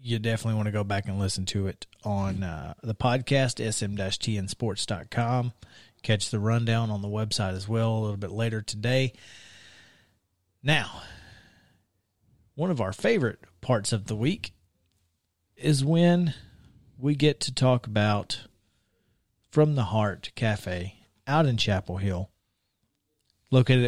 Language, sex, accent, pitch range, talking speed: English, male, American, 100-125 Hz, 135 wpm